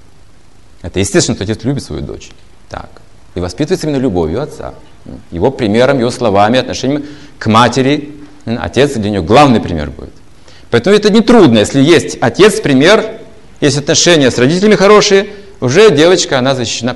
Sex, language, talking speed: male, Russian, 150 wpm